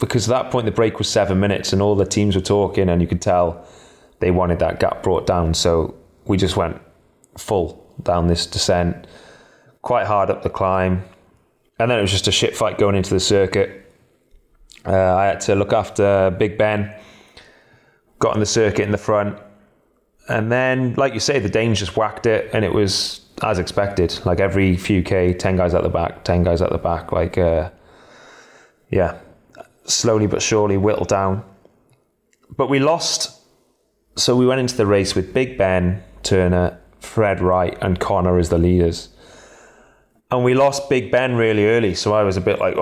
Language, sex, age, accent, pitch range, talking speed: English, male, 20-39, British, 90-110 Hz, 190 wpm